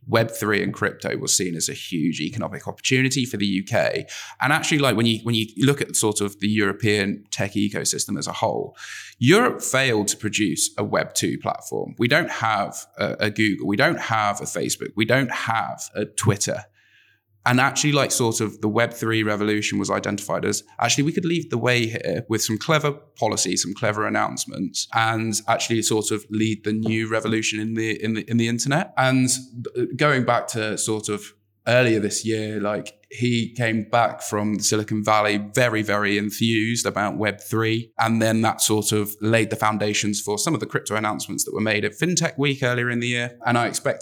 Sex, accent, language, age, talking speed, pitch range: male, British, English, 20-39, 195 wpm, 105-120 Hz